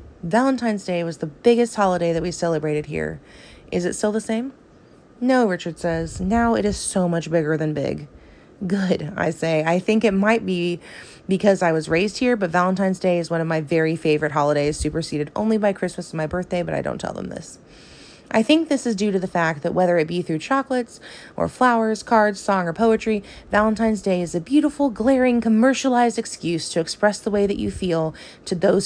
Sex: female